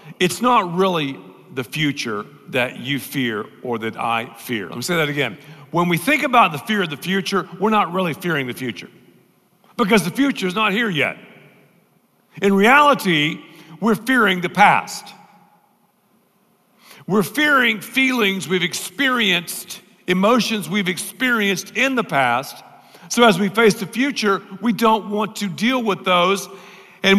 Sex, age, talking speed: male, 50-69, 155 wpm